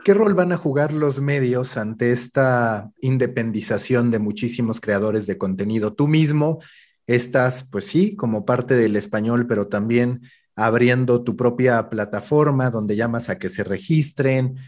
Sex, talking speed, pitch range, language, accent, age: male, 145 wpm, 120-150 Hz, Spanish, Mexican, 40-59